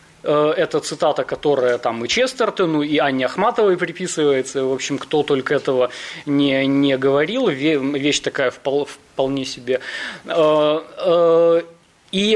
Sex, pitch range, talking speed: male, 140-195 Hz, 110 wpm